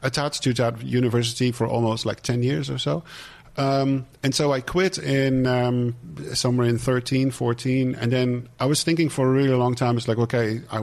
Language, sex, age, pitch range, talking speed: English, male, 50-69, 115-135 Hz, 200 wpm